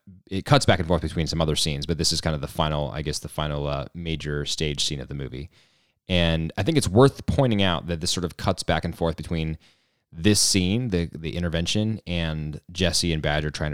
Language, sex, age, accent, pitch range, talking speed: English, male, 20-39, American, 75-95 Hz, 230 wpm